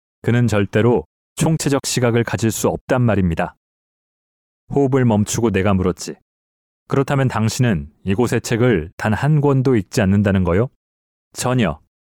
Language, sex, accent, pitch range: Korean, male, native, 95-130 Hz